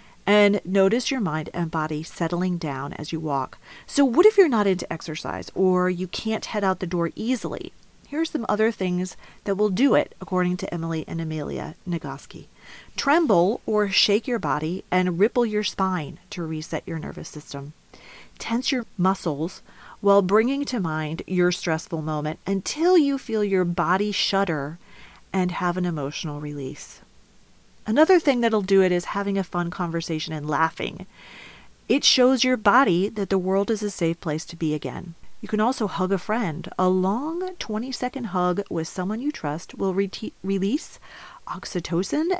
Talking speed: 165 wpm